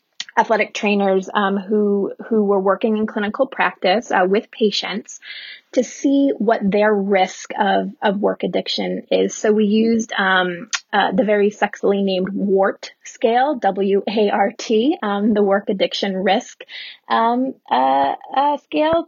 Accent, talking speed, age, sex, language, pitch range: American, 150 wpm, 20-39, female, English, 195-245 Hz